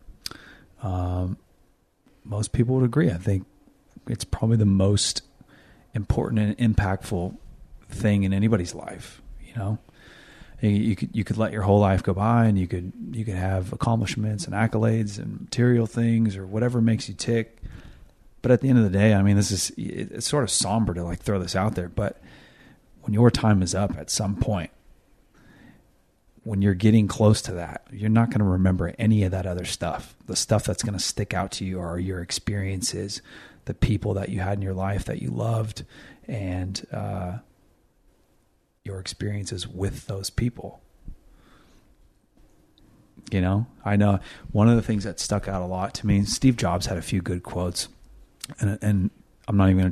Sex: male